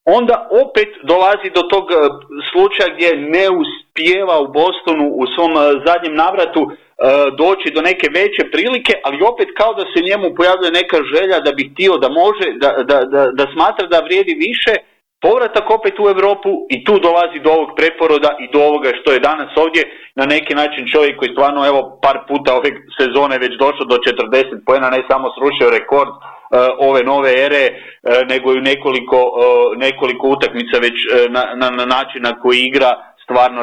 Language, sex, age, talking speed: Croatian, male, 40-59, 170 wpm